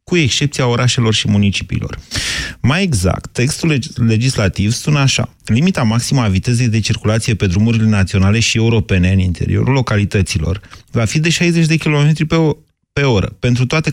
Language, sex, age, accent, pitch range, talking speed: Romanian, male, 30-49, native, 105-140 Hz, 150 wpm